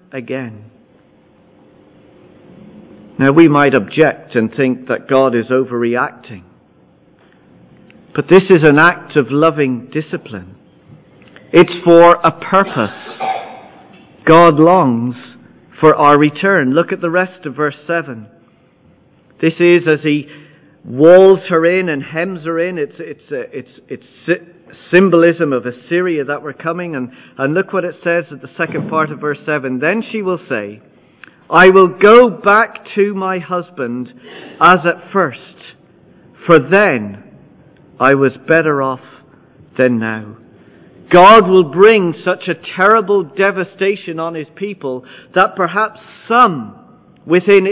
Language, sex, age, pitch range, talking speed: English, male, 50-69, 140-185 Hz, 135 wpm